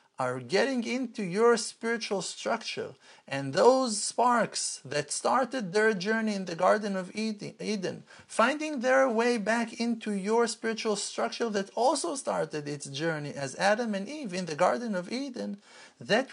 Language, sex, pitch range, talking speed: English, male, 150-225 Hz, 150 wpm